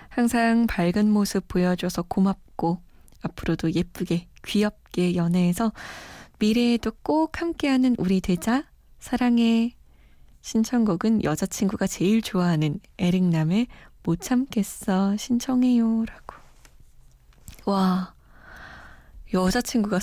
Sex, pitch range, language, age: female, 185-230 Hz, Korean, 20-39